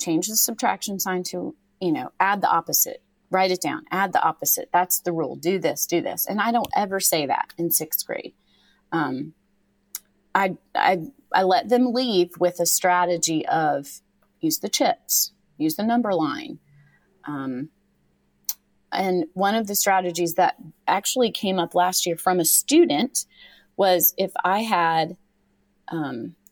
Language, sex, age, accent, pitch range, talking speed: English, female, 30-49, American, 170-205 Hz, 160 wpm